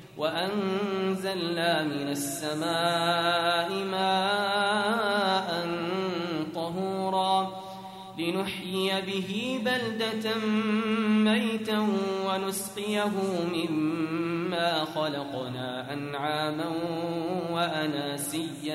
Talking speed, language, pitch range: 45 wpm, Arabic, 150-190 Hz